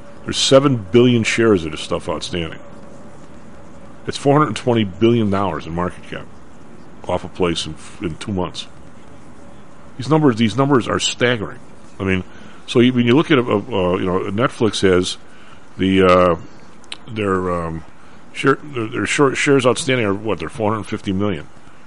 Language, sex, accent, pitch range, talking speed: English, male, American, 95-125 Hz, 175 wpm